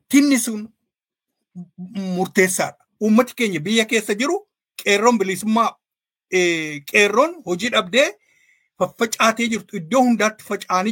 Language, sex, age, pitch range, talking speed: Swedish, male, 50-69, 195-255 Hz, 100 wpm